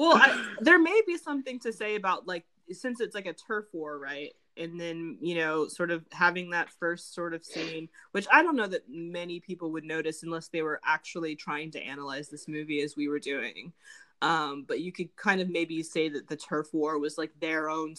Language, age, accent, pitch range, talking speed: English, 20-39, American, 160-185 Hz, 225 wpm